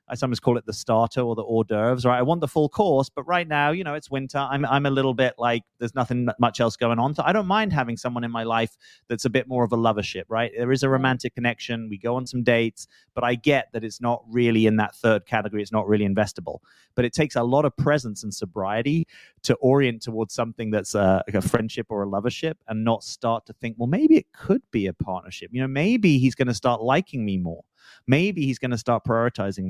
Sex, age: male, 30-49